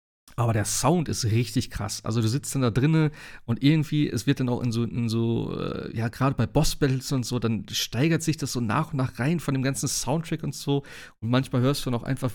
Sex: male